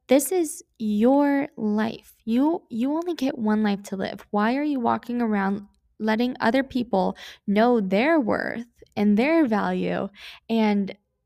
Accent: American